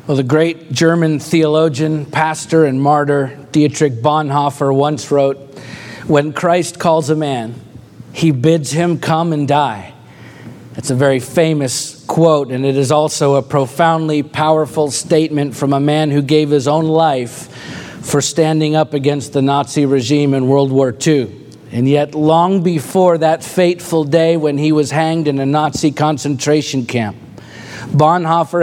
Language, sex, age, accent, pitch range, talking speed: English, male, 50-69, American, 140-165 Hz, 150 wpm